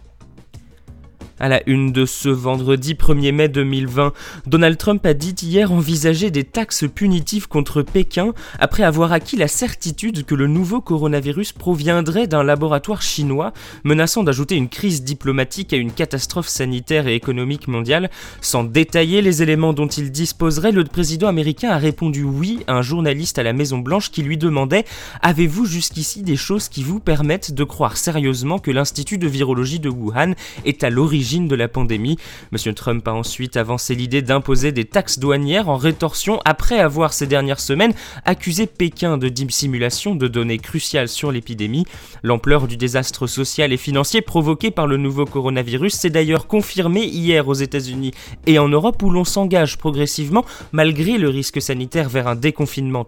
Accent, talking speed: French, 165 wpm